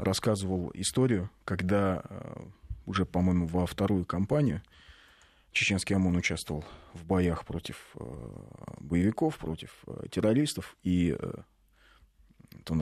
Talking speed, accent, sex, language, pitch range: 90 wpm, native, male, Russian, 90-130 Hz